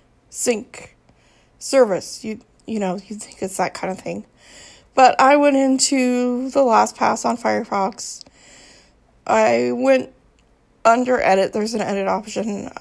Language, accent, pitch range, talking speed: English, American, 200-245 Hz, 135 wpm